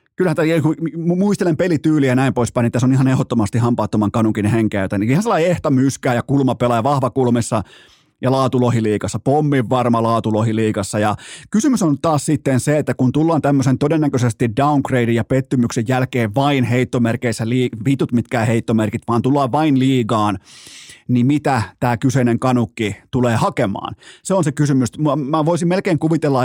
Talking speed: 160 wpm